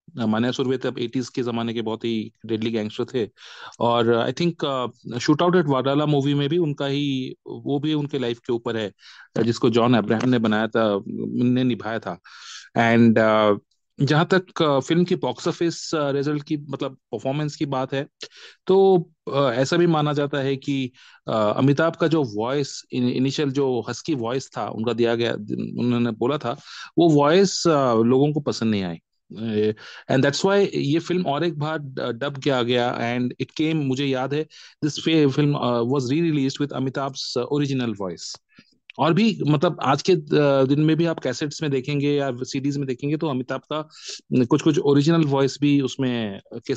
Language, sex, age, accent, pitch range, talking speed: Hindi, male, 30-49, native, 120-150 Hz, 155 wpm